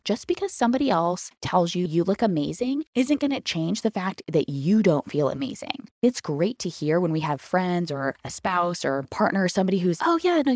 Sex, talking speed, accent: female, 215 wpm, American